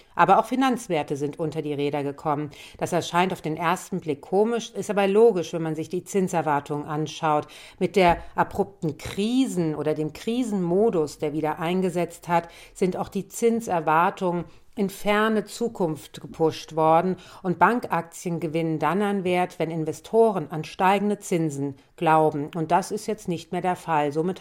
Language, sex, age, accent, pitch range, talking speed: German, female, 50-69, German, 160-190 Hz, 160 wpm